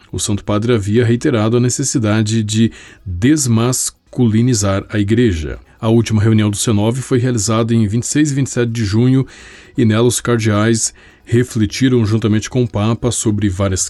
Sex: male